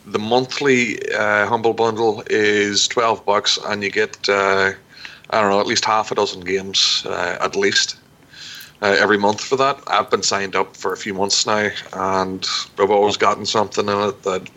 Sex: male